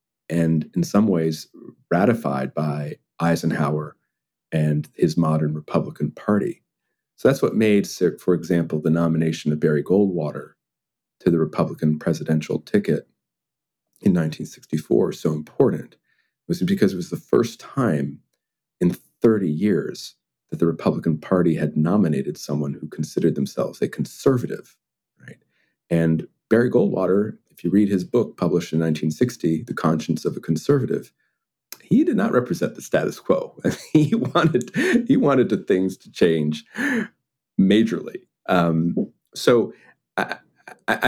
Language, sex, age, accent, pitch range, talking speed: English, male, 40-59, American, 80-95 Hz, 135 wpm